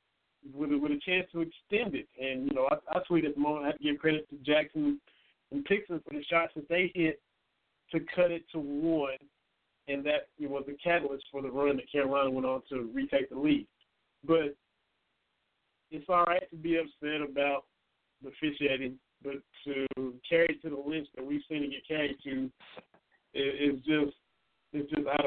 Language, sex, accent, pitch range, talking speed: English, male, American, 145-165 Hz, 195 wpm